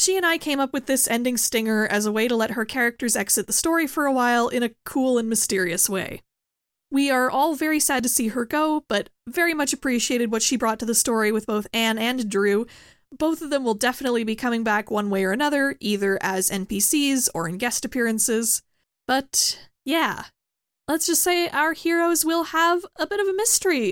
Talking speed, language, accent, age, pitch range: 215 wpm, English, American, 10-29, 215-275 Hz